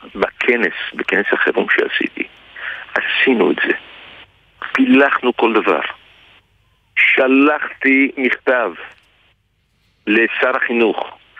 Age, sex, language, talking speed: 50-69, male, Hebrew, 75 wpm